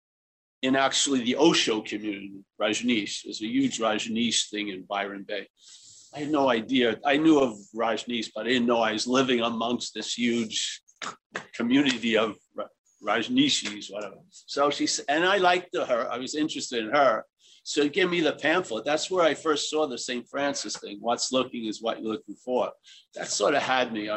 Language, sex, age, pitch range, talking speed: English, male, 50-69, 120-160 Hz, 185 wpm